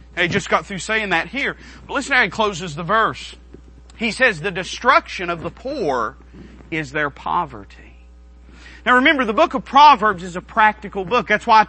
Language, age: English, 40-59